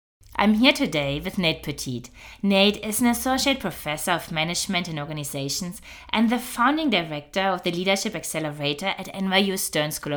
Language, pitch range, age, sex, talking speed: English, 160-210 Hz, 20-39, female, 160 wpm